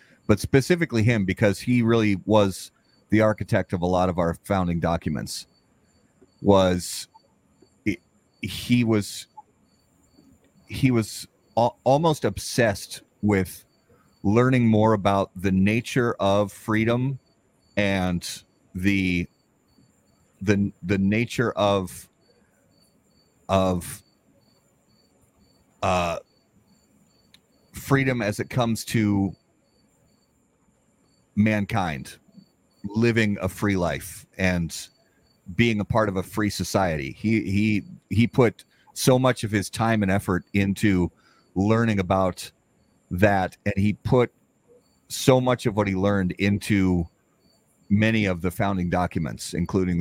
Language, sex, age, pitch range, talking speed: English, male, 30-49, 90-110 Hz, 105 wpm